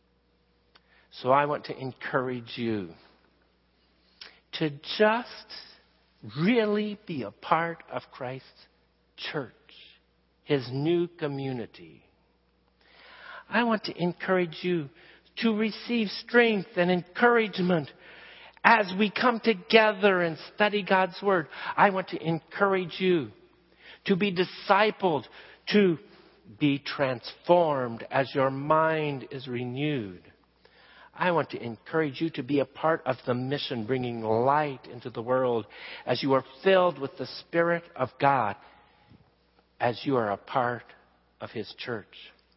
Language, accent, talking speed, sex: English, American, 120 wpm, male